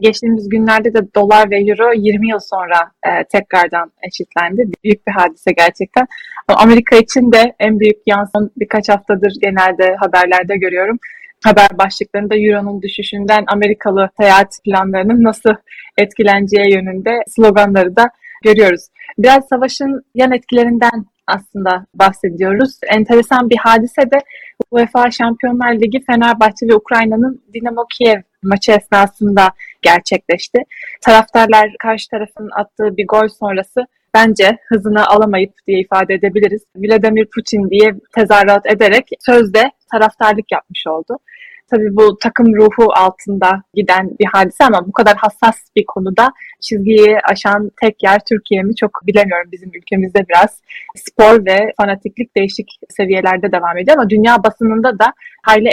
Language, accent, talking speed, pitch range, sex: Turkish, native, 130 wpm, 195-225 Hz, female